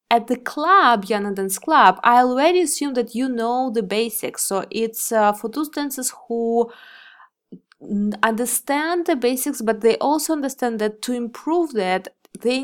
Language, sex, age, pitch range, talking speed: English, female, 20-39, 185-235 Hz, 155 wpm